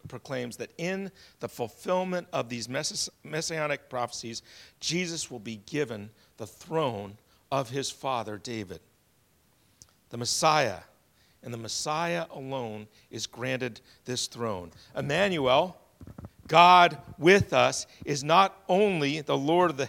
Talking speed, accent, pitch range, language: 125 wpm, American, 115-170 Hz, English